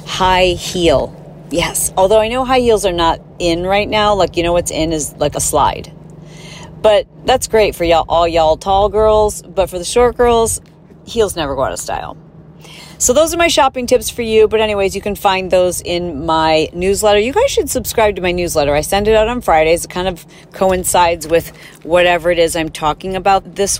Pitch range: 160-195 Hz